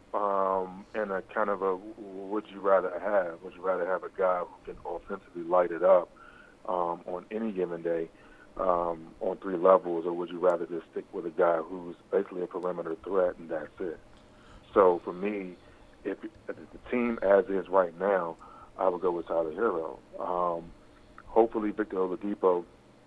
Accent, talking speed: American, 180 wpm